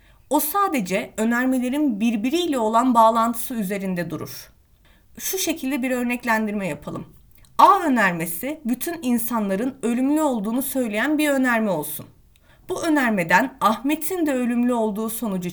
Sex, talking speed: female, 115 wpm